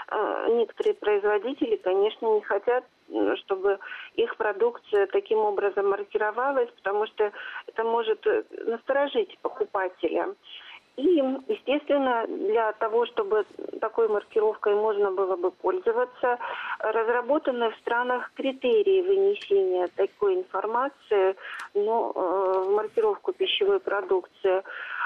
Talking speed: 95 wpm